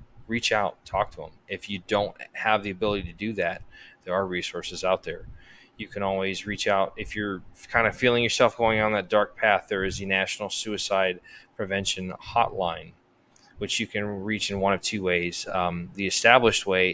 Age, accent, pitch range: 20-39, American, 95-110 Hz